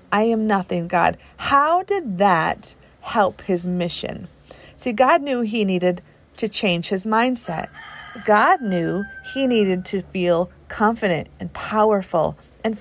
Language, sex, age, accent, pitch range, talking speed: English, female, 40-59, American, 185-260 Hz, 135 wpm